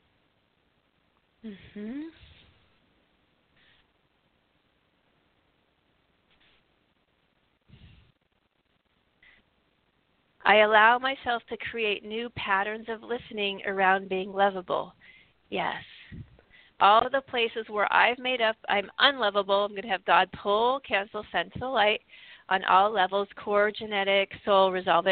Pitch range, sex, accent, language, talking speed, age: 195-225 Hz, female, American, English, 100 wpm, 40-59